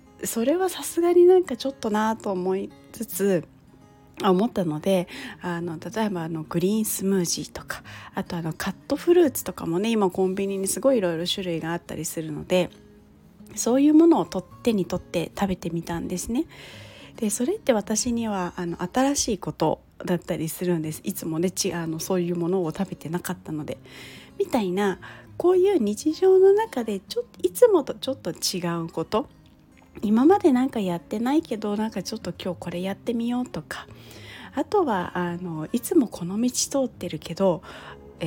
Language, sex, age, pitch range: Japanese, female, 30-49, 170-240 Hz